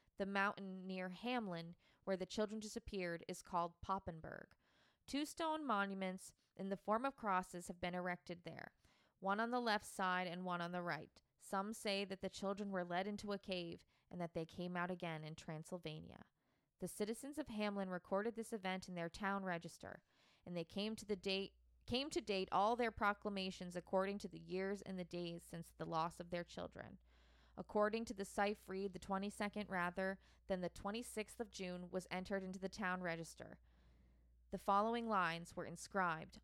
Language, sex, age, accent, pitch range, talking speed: English, female, 20-39, American, 175-200 Hz, 180 wpm